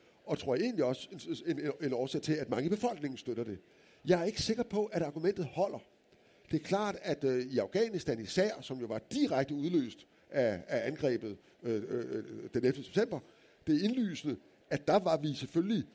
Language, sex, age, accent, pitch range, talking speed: Danish, male, 60-79, native, 130-180 Hz, 195 wpm